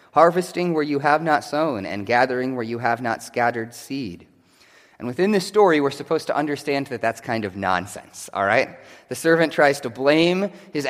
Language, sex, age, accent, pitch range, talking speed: English, male, 30-49, American, 110-165 Hz, 195 wpm